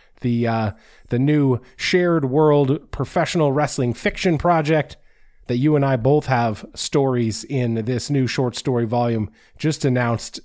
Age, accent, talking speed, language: 30-49, American, 145 wpm, English